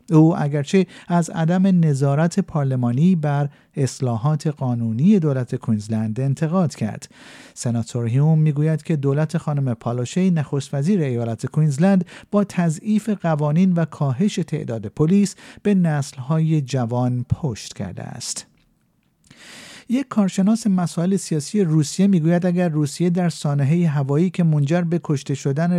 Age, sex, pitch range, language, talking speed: 50-69, male, 135-180 Hz, Persian, 125 wpm